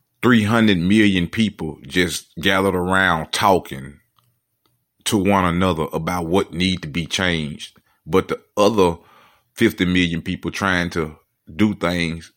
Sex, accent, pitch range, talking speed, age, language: male, American, 80-100 Hz, 125 wpm, 30-49, English